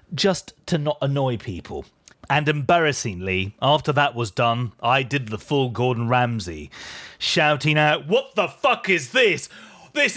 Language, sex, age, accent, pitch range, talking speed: English, male, 30-49, British, 130-185 Hz, 150 wpm